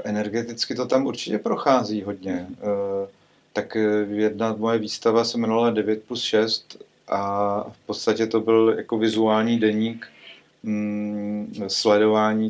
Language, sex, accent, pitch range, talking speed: Czech, male, native, 100-110 Hz, 115 wpm